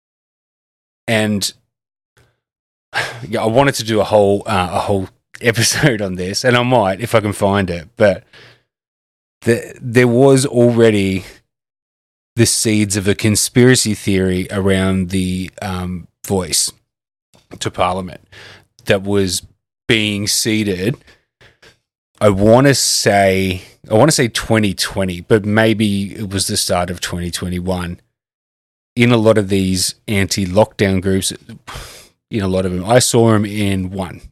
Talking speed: 140 wpm